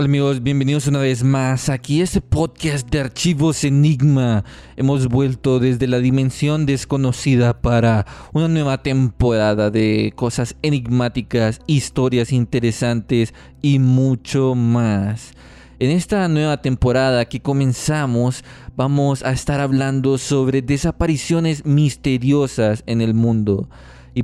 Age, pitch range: 20-39, 120-150 Hz